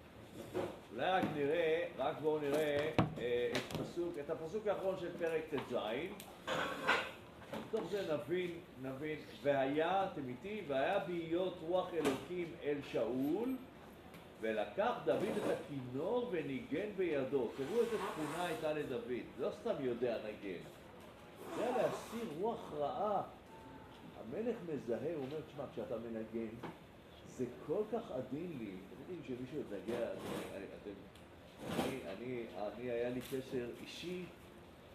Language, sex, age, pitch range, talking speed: Hebrew, male, 50-69, 125-190 Hz, 100 wpm